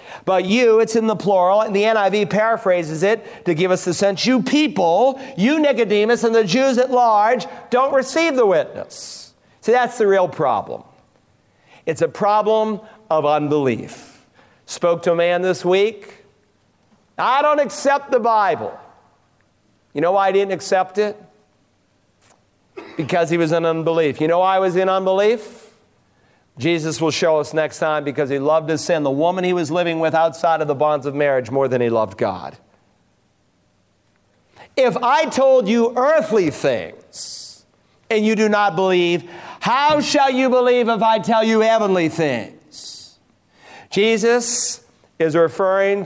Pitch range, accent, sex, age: 165-230 Hz, American, male, 50-69